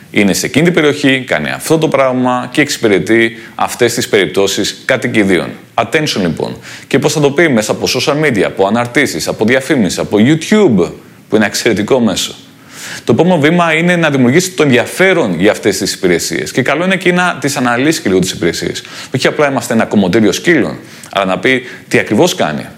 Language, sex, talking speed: Greek, male, 190 wpm